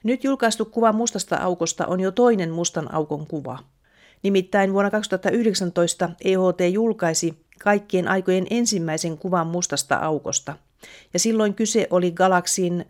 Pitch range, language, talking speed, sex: 170-205 Hz, Finnish, 125 wpm, female